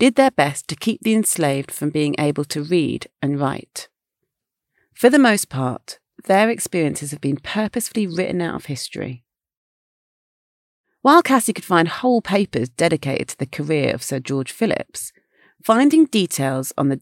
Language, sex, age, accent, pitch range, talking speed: English, female, 40-59, British, 140-210 Hz, 160 wpm